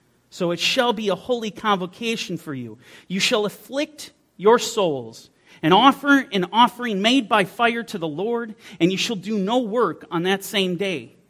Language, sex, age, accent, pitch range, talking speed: English, male, 40-59, American, 165-210 Hz, 180 wpm